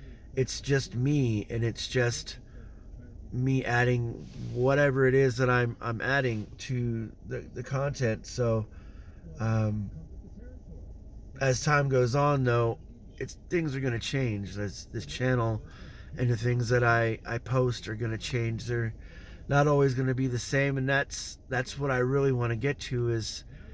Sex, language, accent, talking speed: male, English, American, 165 wpm